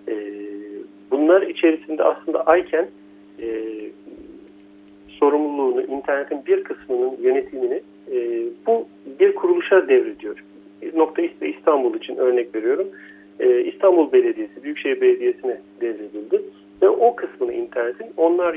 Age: 50-69